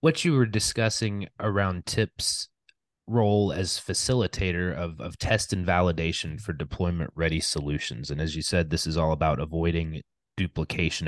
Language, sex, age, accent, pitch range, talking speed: English, male, 30-49, American, 80-95 Hz, 145 wpm